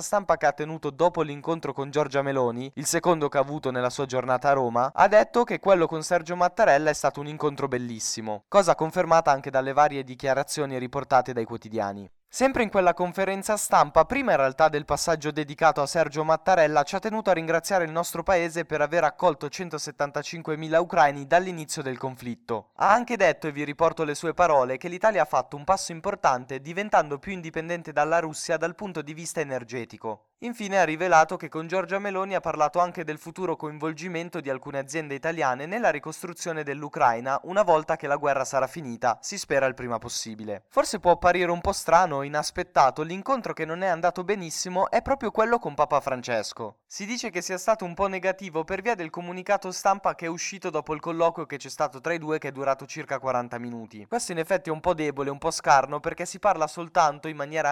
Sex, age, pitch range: male, 10-29, 140-180 Hz